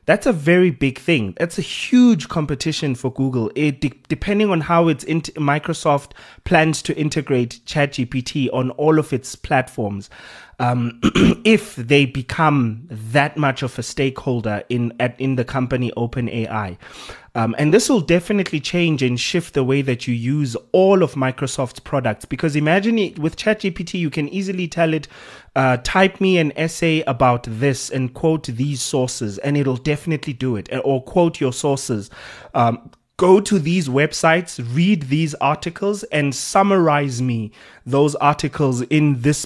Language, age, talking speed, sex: English, 30-49, 160 wpm, male